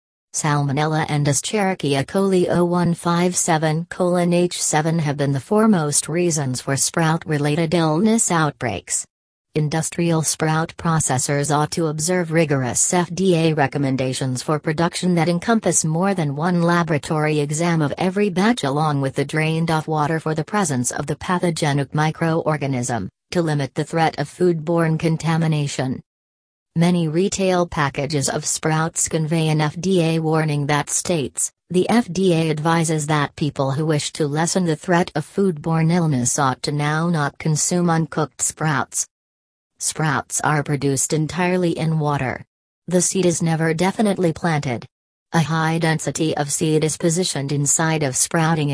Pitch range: 145-170 Hz